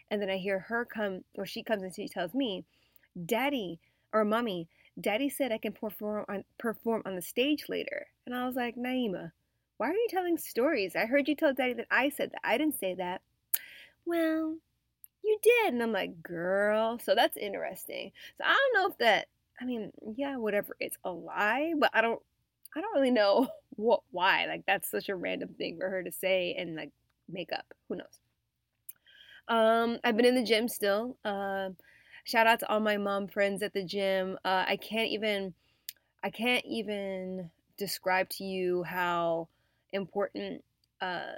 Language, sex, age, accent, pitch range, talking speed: English, female, 20-39, American, 185-235 Hz, 185 wpm